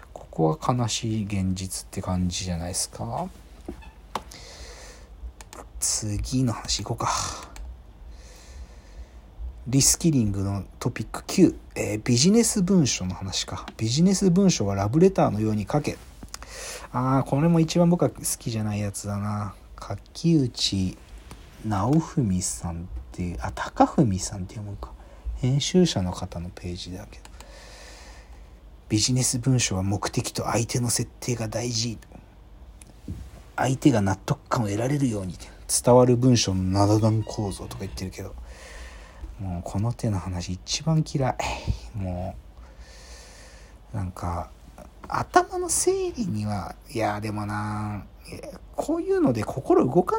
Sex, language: male, Japanese